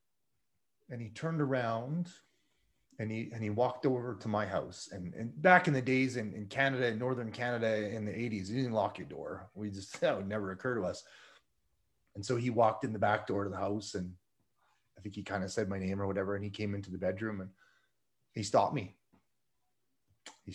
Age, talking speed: 30-49, 215 wpm